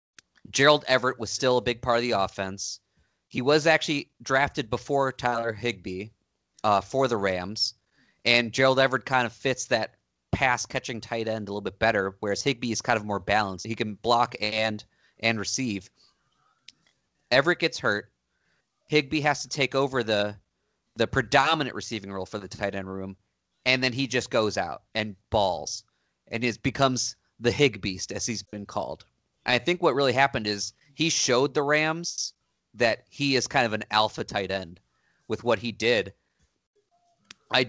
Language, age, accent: English, 30-49, American